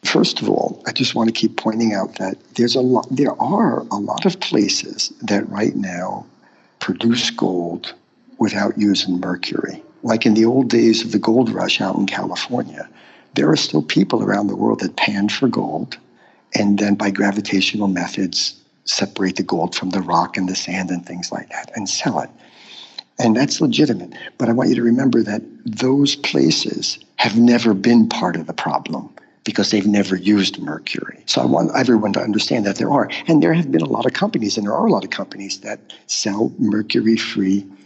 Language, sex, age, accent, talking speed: English, male, 60-79, American, 195 wpm